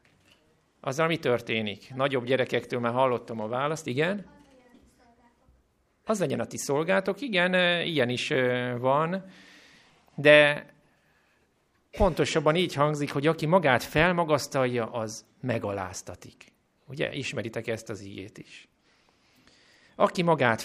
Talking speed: 110 wpm